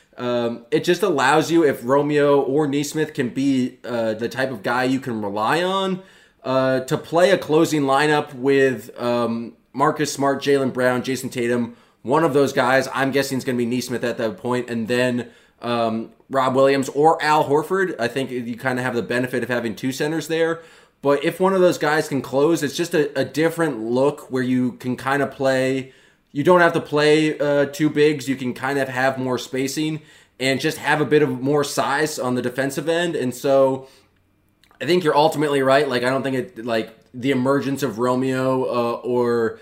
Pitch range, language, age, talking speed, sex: 125-150 Hz, English, 20-39, 205 wpm, male